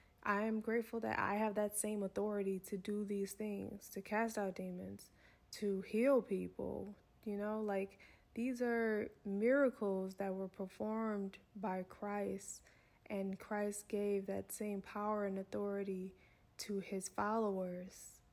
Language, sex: English, female